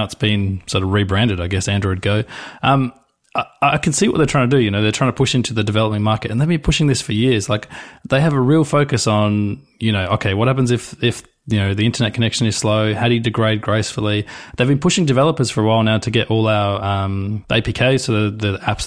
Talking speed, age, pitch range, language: 255 wpm, 20-39, 105-125 Hz, English